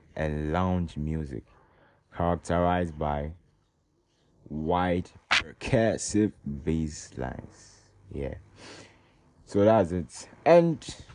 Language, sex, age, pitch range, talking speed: English, male, 20-39, 80-110 Hz, 75 wpm